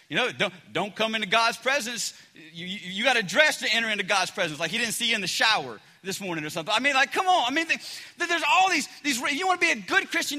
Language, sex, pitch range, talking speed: English, male, 225-320 Hz, 300 wpm